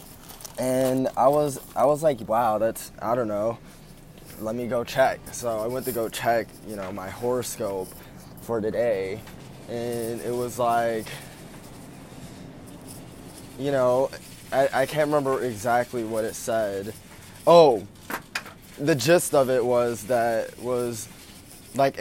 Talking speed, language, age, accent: 135 wpm, English, 20-39, American